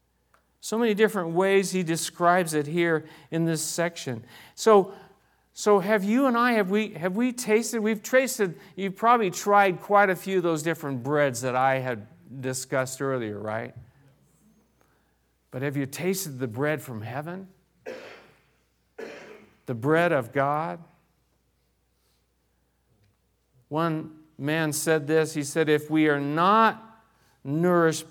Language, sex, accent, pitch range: English, male, American, 145-190 Hz